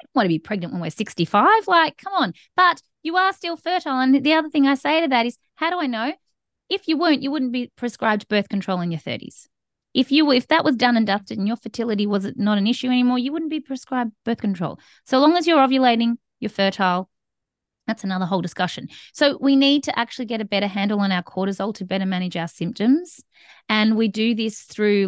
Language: English